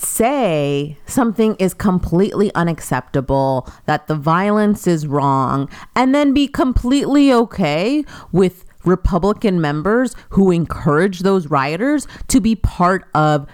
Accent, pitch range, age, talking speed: American, 160-240 Hz, 30-49, 115 wpm